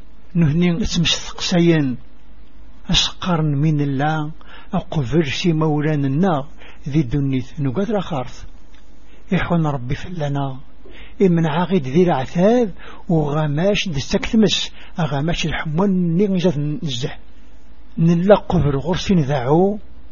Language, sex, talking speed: English, male, 90 wpm